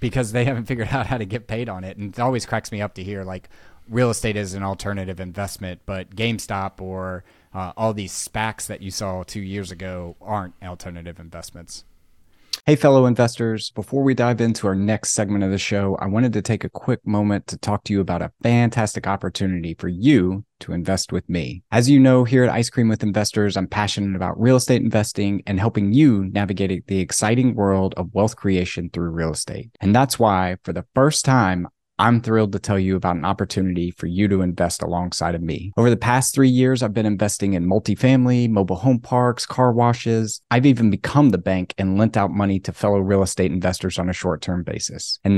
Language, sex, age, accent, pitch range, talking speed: English, male, 30-49, American, 95-115 Hz, 210 wpm